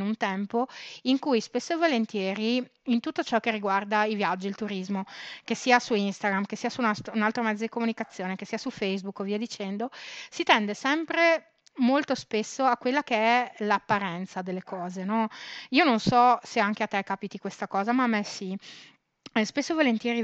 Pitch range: 195-240 Hz